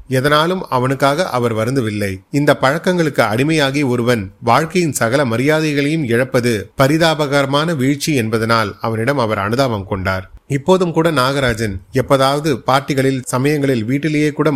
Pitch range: 115-150 Hz